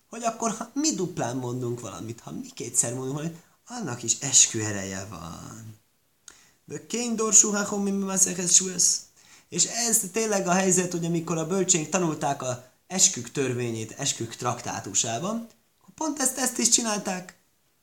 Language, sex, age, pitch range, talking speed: Hungarian, male, 20-39, 115-170 Hz, 125 wpm